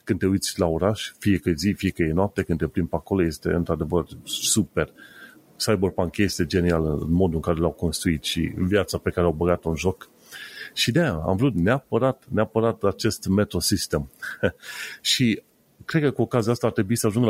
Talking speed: 190 wpm